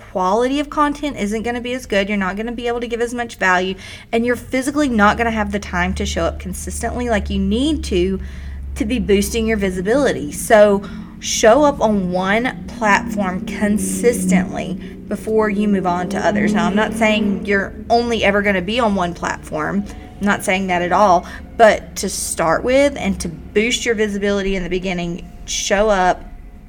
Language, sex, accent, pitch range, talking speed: English, female, American, 185-230 Hz, 200 wpm